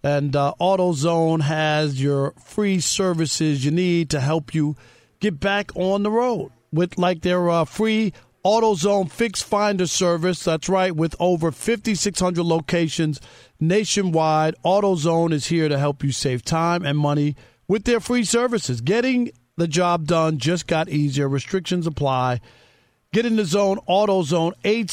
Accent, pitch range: American, 150-195 Hz